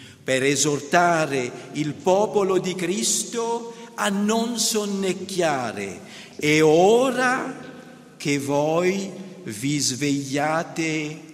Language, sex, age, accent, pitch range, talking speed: Italian, male, 50-69, native, 135-190 Hz, 80 wpm